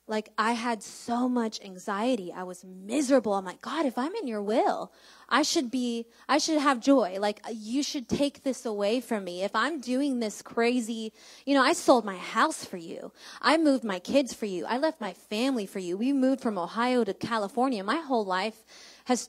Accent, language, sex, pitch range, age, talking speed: American, English, female, 230-285 Hz, 20-39, 210 wpm